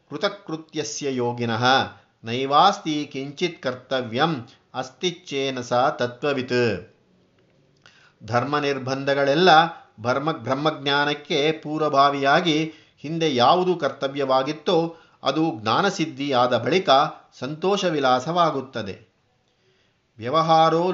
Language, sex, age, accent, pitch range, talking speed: Kannada, male, 50-69, native, 125-160 Hz, 45 wpm